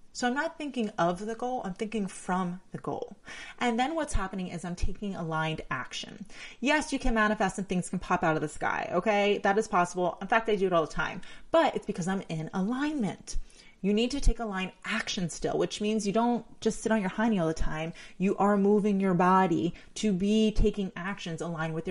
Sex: female